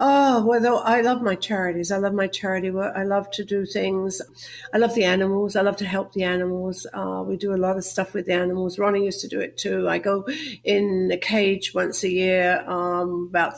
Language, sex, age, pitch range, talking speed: English, female, 50-69, 190-240 Hz, 235 wpm